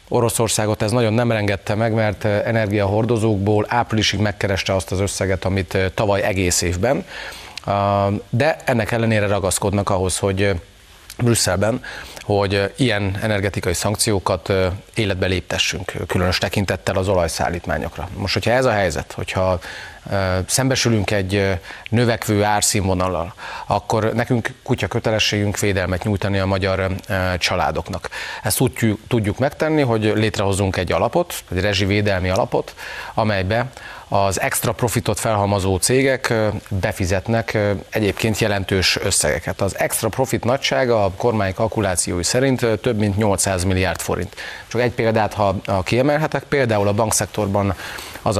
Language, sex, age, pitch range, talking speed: Hungarian, male, 30-49, 95-115 Hz, 120 wpm